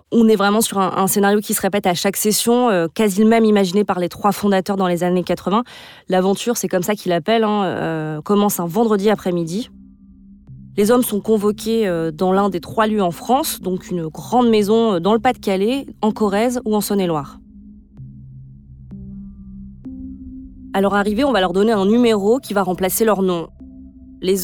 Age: 20-39